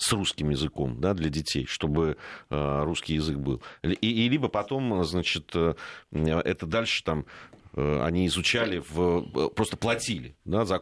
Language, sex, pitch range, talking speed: Russian, male, 80-120 Hz, 140 wpm